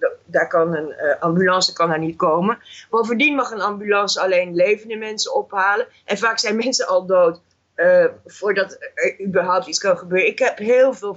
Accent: Dutch